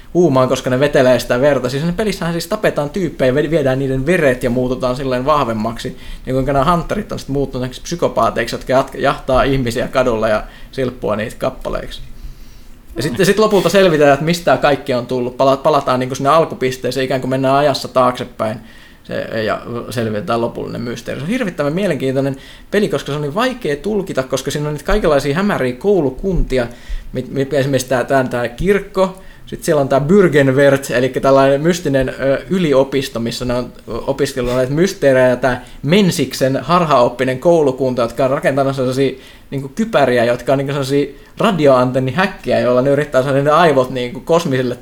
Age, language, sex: 20-39, Finnish, male